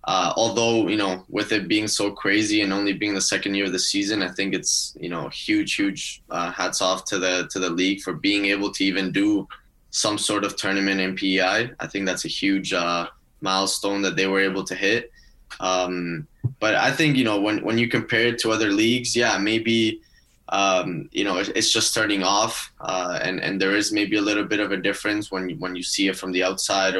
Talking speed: 225 wpm